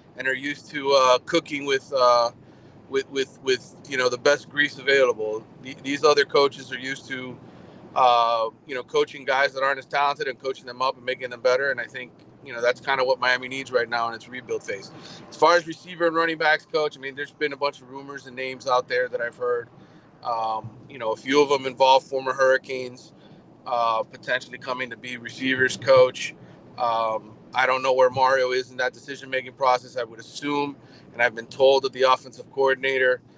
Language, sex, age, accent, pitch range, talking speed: English, male, 30-49, American, 120-145 Hz, 215 wpm